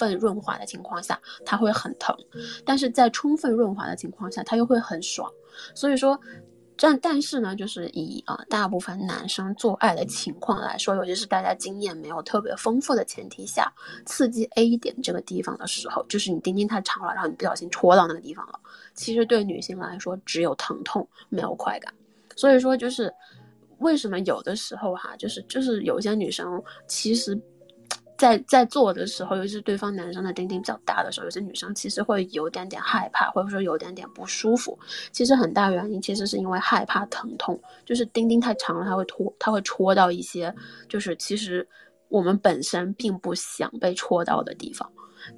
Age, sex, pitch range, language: 20-39, female, 190-245 Hz, Chinese